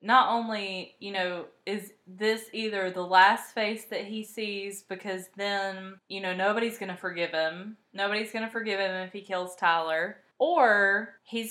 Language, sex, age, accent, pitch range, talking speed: English, female, 20-39, American, 190-220 Hz, 170 wpm